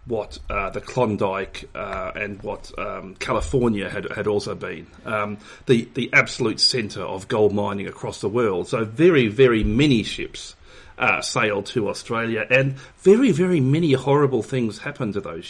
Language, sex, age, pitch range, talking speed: English, male, 40-59, 110-145 Hz, 165 wpm